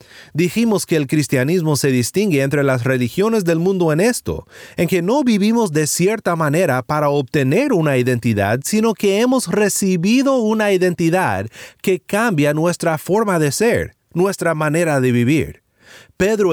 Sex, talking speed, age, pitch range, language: male, 150 wpm, 30-49, 145-200 Hz, Spanish